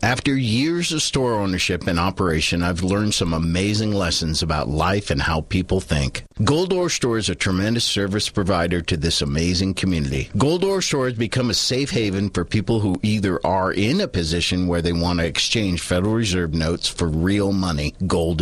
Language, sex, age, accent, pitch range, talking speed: English, male, 50-69, American, 90-120 Hz, 190 wpm